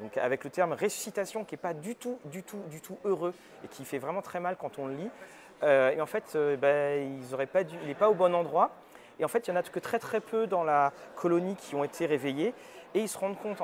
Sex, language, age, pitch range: male, French, 30-49, 150-205 Hz